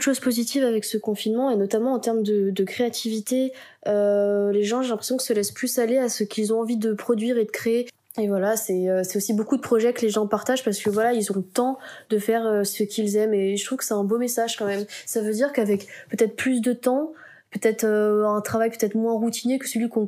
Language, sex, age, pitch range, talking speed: French, female, 20-39, 210-240 Hz, 260 wpm